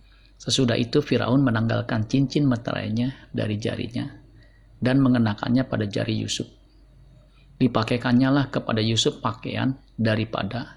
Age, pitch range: 50-69, 110-130 Hz